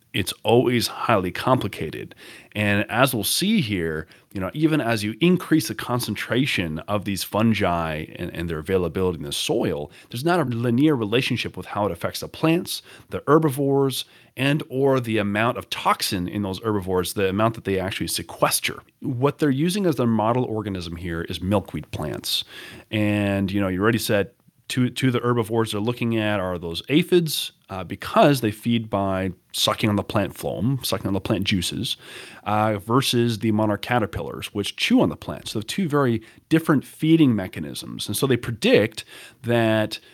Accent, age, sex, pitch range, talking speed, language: American, 30-49, male, 95-125 Hz, 175 wpm, English